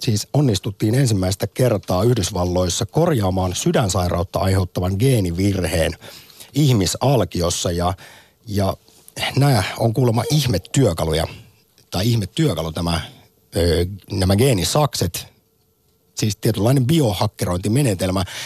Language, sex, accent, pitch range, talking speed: Finnish, male, native, 95-120 Hz, 80 wpm